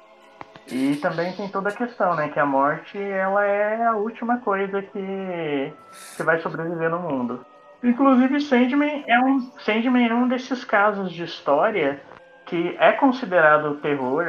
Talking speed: 140 wpm